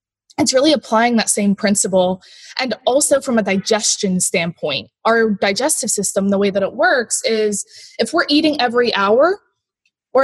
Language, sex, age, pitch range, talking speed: English, female, 20-39, 200-260 Hz, 160 wpm